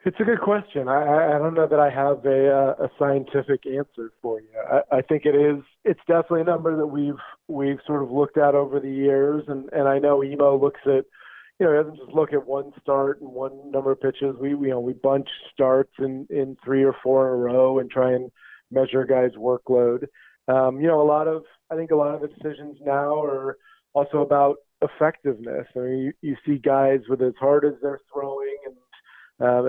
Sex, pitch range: male, 130-145 Hz